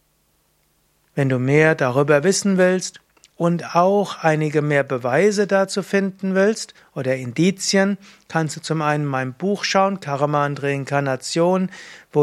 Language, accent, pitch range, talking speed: German, German, 150-180 Hz, 135 wpm